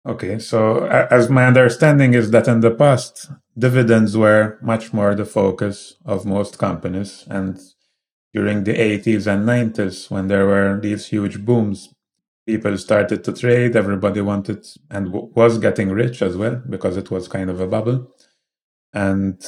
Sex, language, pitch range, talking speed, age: male, English, 95-115 Hz, 155 wpm, 30-49